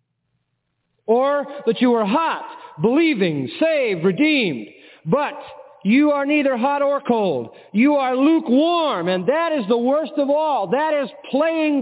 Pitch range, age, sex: 175-275 Hz, 40-59, male